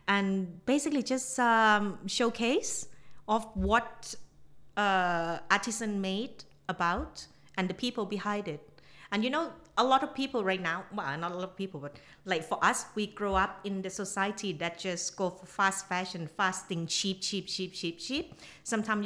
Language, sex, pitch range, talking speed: English, female, 165-205 Hz, 175 wpm